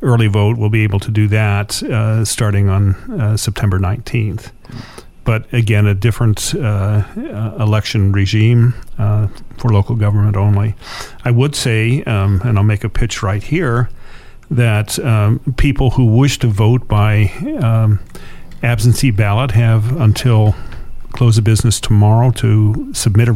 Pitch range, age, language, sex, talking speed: 105-120 Hz, 50-69, English, male, 145 wpm